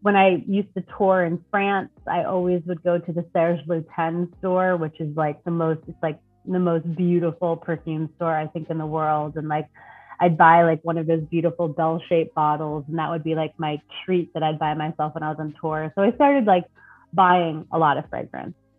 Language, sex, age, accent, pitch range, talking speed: English, female, 30-49, American, 160-185 Hz, 220 wpm